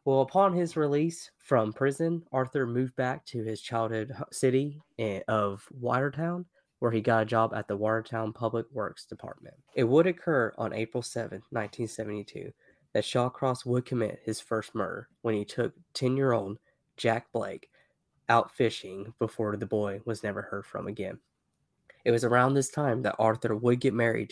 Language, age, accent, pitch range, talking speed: English, 20-39, American, 110-130 Hz, 165 wpm